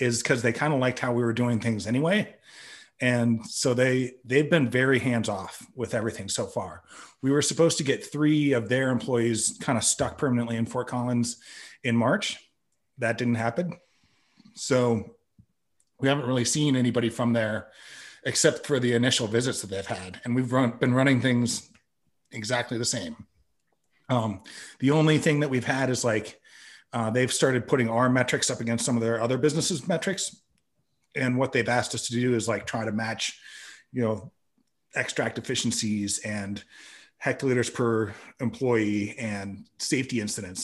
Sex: male